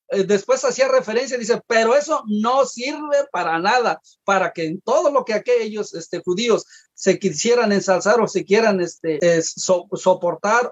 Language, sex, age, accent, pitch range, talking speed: English, male, 40-59, Mexican, 190-240 Hz, 145 wpm